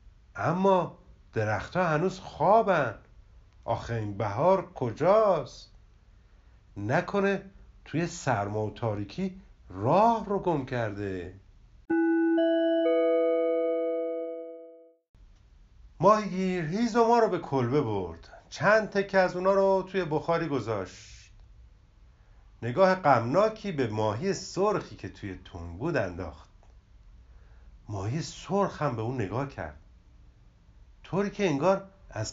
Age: 50-69